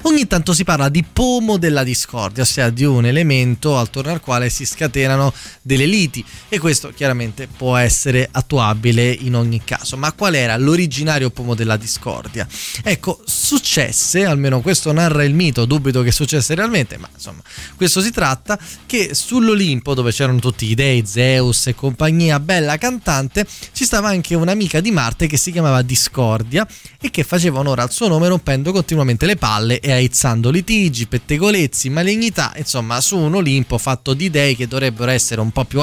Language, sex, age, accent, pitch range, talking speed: Italian, male, 20-39, native, 120-165 Hz, 170 wpm